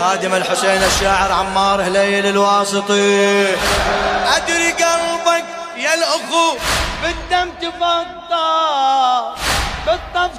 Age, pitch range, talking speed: 20-39, 195-265 Hz, 75 wpm